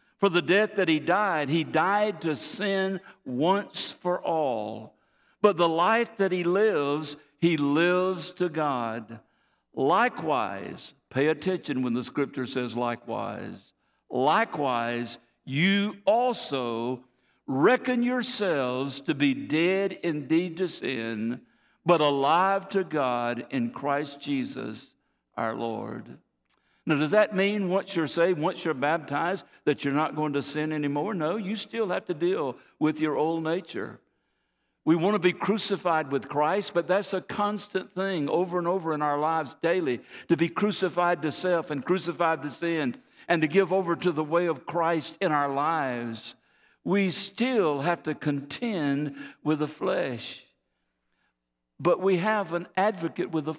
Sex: male